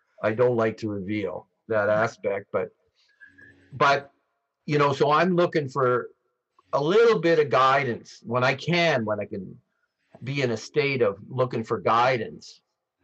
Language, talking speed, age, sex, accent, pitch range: English, 155 wpm, 50-69, male, American, 110-145 Hz